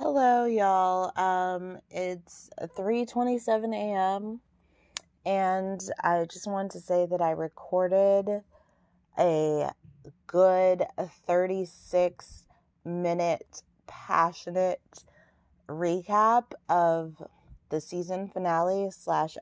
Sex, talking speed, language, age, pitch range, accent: female, 75 wpm, English, 20-39, 160-195 Hz, American